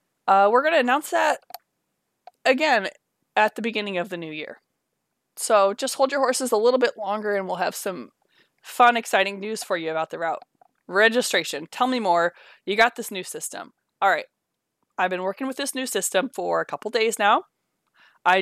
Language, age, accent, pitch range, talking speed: English, 20-39, American, 180-235 Hz, 190 wpm